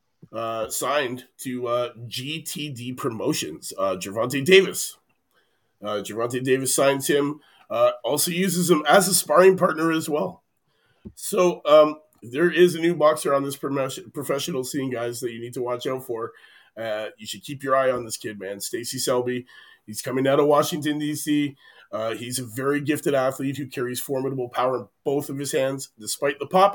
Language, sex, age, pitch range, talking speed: English, male, 30-49, 125-155 Hz, 180 wpm